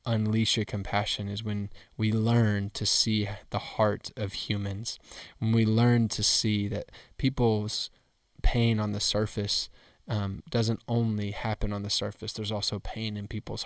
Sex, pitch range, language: male, 100-110 Hz, English